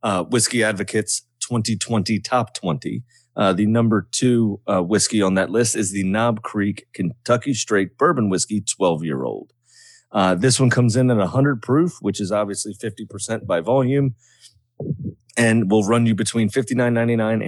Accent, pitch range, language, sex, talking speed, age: American, 100-120 Hz, English, male, 150 wpm, 30-49